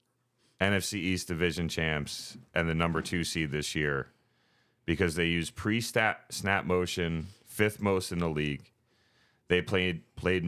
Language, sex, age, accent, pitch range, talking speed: English, male, 30-49, American, 85-115 Hz, 145 wpm